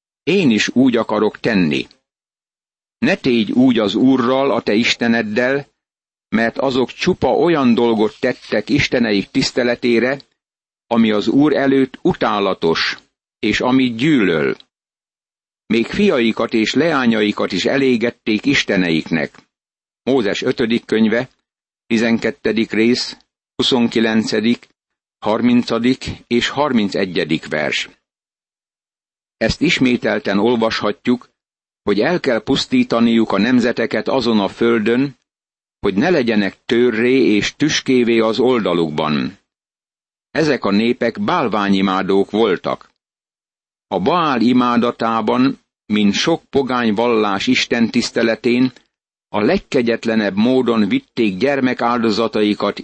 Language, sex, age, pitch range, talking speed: Hungarian, male, 50-69, 110-130 Hz, 95 wpm